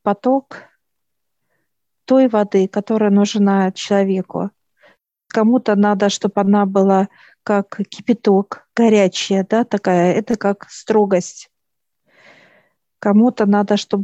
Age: 50-69